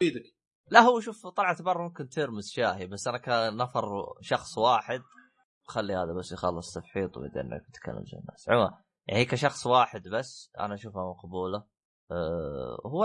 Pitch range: 100-140 Hz